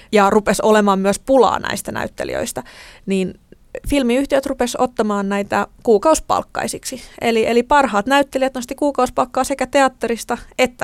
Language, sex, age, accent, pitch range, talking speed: Finnish, female, 20-39, native, 210-255 Hz, 120 wpm